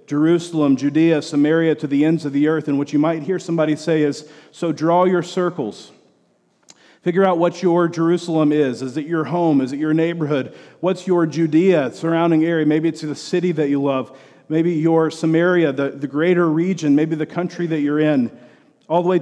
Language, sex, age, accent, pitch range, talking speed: English, male, 40-59, American, 150-185 Hz, 195 wpm